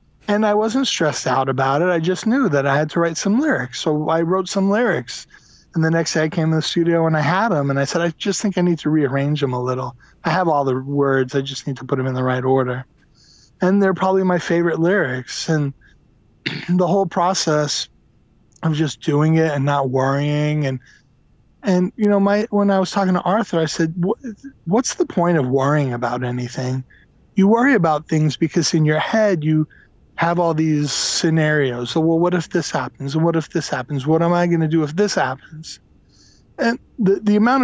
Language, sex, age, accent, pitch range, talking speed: English, male, 20-39, American, 145-190 Hz, 220 wpm